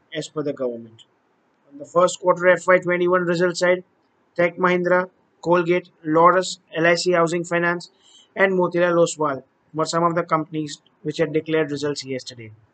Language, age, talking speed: English, 20-39, 145 wpm